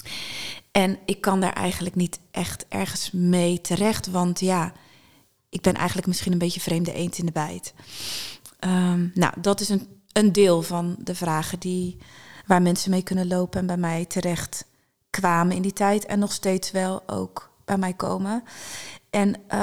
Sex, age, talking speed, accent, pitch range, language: female, 30-49, 170 wpm, Dutch, 180-200 Hz, Dutch